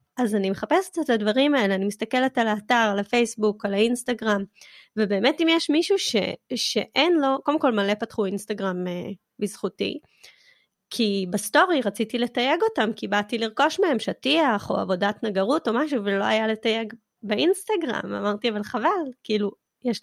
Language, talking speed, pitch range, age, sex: Hebrew, 155 wpm, 205-255 Hz, 20-39, female